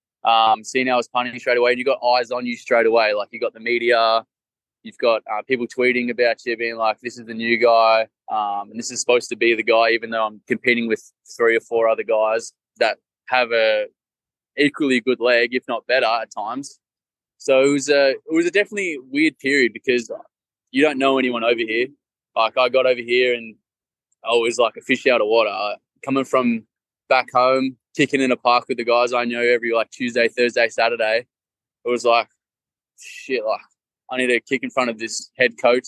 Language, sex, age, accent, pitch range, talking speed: English, male, 20-39, Australian, 115-130 Hz, 215 wpm